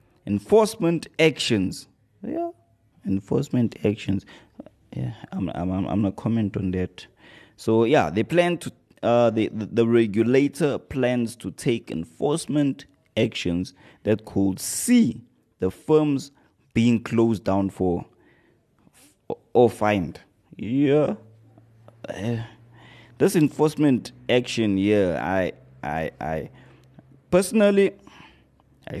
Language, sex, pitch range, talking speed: English, male, 90-120 Hz, 110 wpm